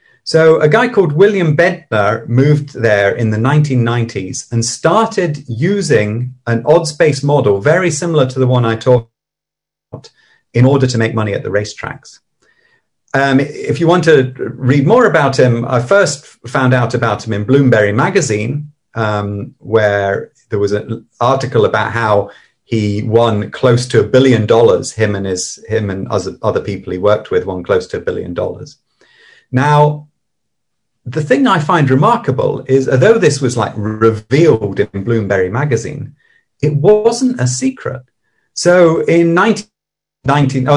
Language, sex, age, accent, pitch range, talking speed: English, male, 40-59, British, 115-155 Hz, 155 wpm